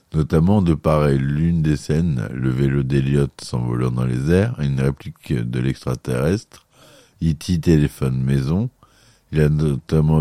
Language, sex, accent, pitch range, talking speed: French, male, French, 70-80 Hz, 135 wpm